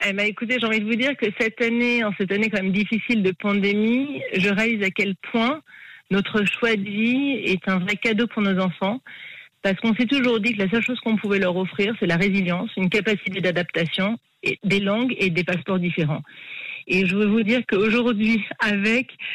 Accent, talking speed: French, 205 wpm